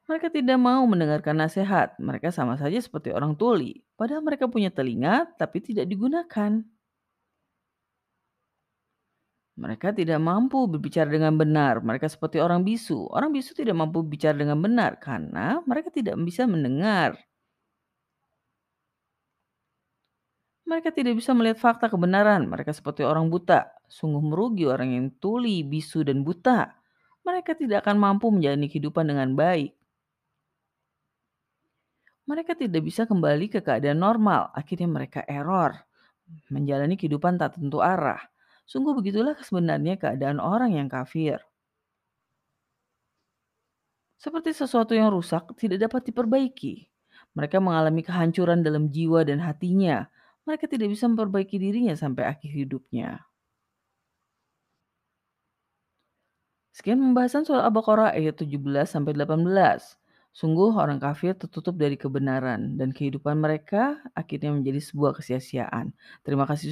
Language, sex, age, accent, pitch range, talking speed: Indonesian, female, 30-49, native, 150-235 Hz, 120 wpm